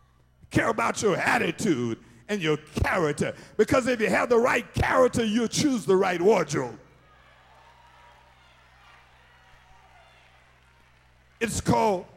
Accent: American